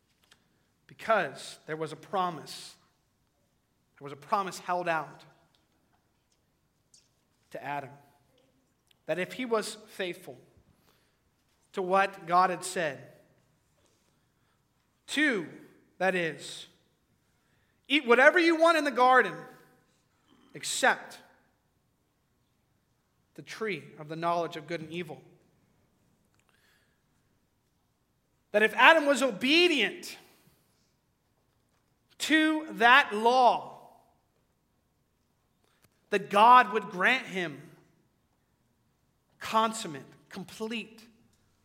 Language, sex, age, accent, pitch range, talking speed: English, male, 40-59, American, 150-205 Hz, 85 wpm